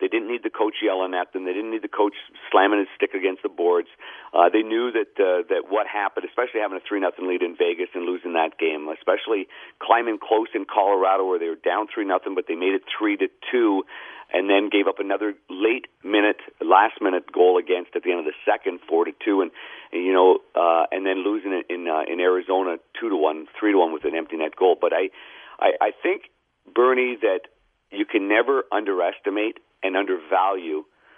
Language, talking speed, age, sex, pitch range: English, 220 wpm, 50-69, male, 335-445 Hz